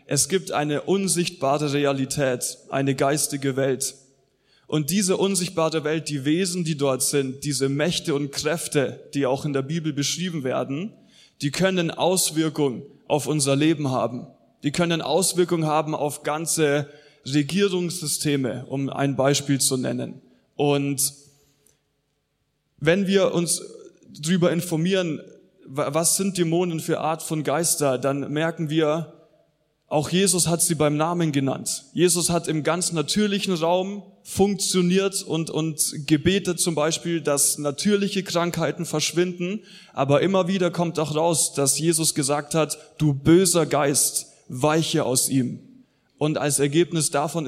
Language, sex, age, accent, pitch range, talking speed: German, male, 20-39, German, 145-170 Hz, 135 wpm